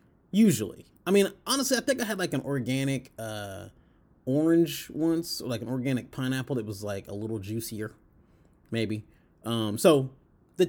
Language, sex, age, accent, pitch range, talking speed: English, male, 30-49, American, 115-170 Hz, 165 wpm